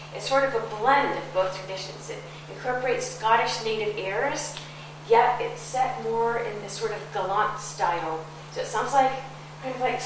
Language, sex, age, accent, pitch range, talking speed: English, female, 40-59, American, 180-235 Hz, 180 wpm